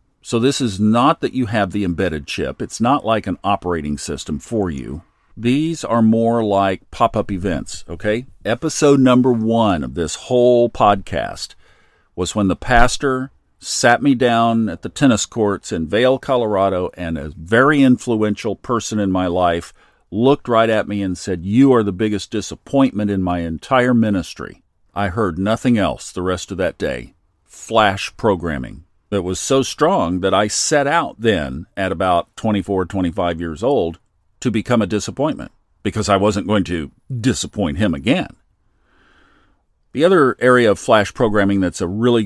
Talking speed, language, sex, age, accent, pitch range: 165 wpm, English, male, 50-69, American, 90-115 Hz